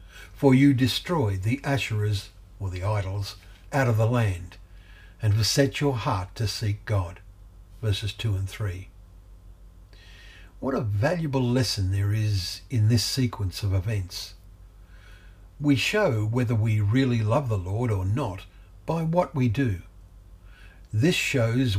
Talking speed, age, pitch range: 140 wpm, 60-79, 95-120 Hz